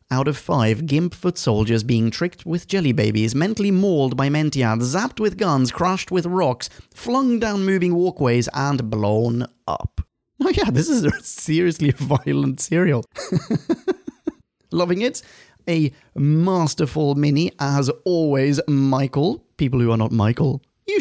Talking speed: 140 wpm